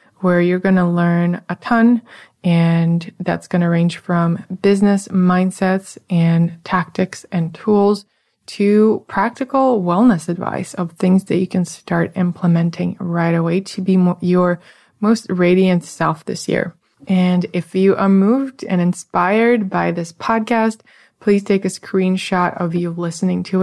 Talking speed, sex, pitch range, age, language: 145 wpm, female, 175-195 Hz, 20-39, English